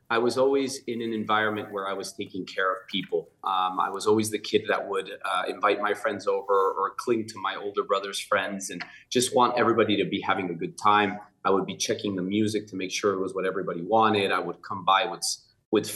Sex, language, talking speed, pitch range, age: male, English, 235 wpm, 95-120 Hz, 30-49